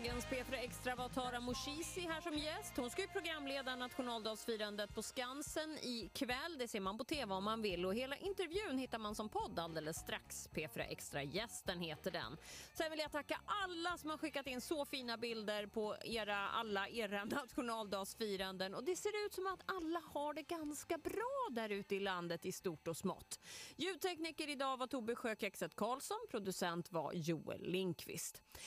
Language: Swedish